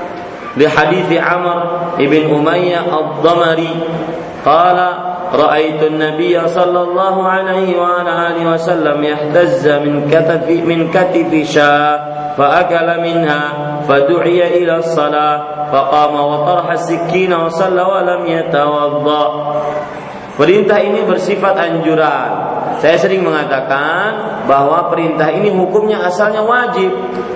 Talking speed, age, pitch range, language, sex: 90 wpm, 40-59, 150-180 Hz, Malay, male